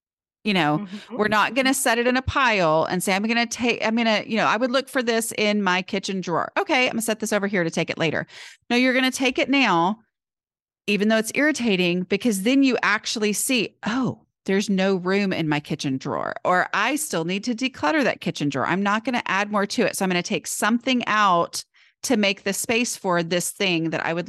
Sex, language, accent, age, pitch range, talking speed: female, English, American, 30-49, 180-235 Hz, 245 wpm